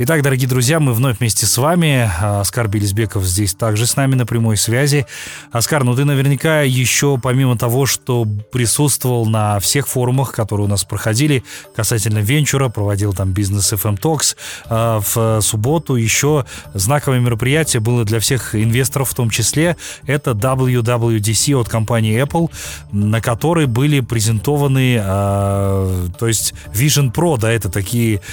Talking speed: 145 wpm